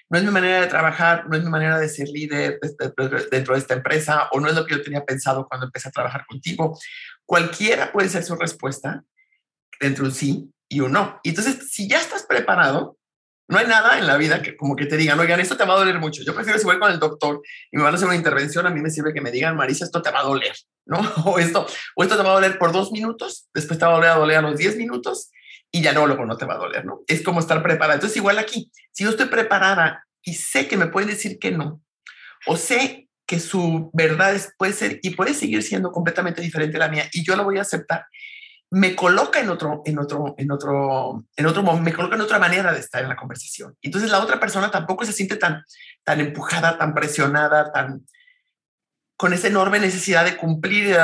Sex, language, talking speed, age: male, English, 245 wpm, 50-69